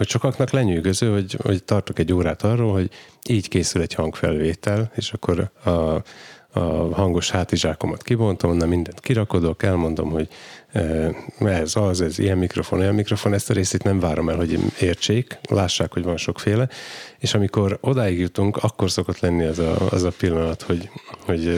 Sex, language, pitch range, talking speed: male, Hungarian, 85-105 Hz, 165 wpm